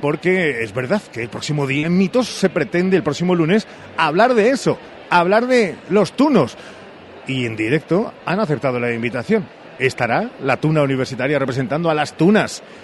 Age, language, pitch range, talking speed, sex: 40-59, Spanish, 125-180 Hz, 170 wpm, male